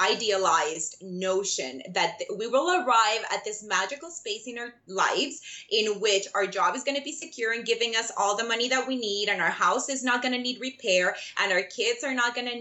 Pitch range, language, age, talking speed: 200-280 Hz, English, 20-39, 210 wpm